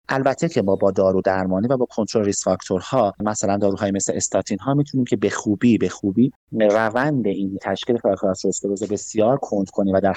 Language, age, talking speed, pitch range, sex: Persian, 30-49, 195 wpm, 95-115 Hz, male